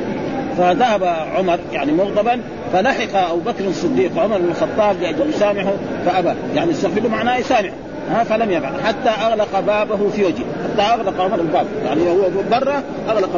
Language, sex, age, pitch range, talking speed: Arabic, male, 50-69, 190-255 Hz, 155 wpm